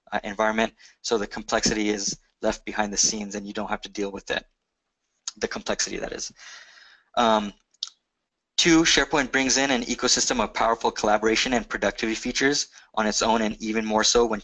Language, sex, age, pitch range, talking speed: English, male, 20-39, 105-120 Hz, 180 wpm